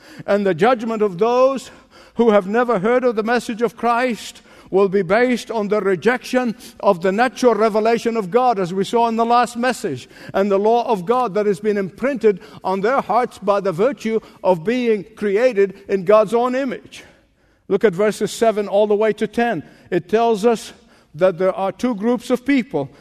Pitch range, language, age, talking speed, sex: 195-245 Hz, English, 60-79, 195 wpm, male